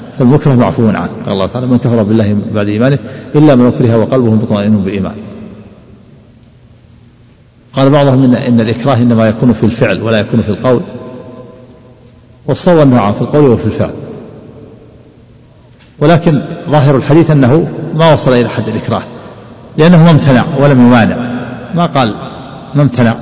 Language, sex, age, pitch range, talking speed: Arabic, male, 50-69, 110-140 Hz, 135 wpm